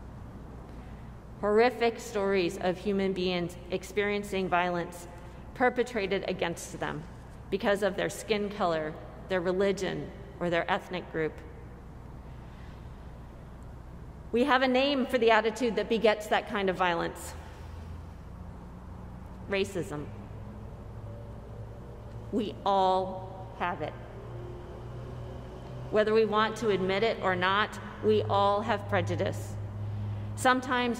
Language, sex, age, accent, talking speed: English, female, 40-59, American, 100 wpm